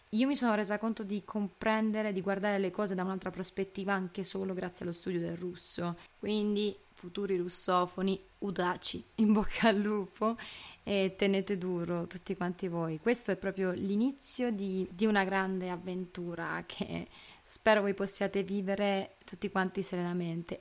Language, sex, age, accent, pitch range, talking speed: Italian, female, 20-39, native, 180-210 Hz, 150 wpm